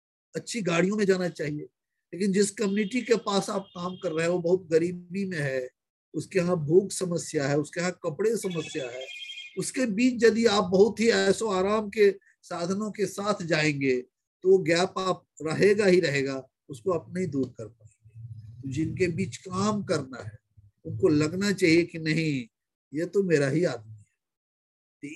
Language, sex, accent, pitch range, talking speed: English, male, Indian, 150-200 Hz, 160 wpm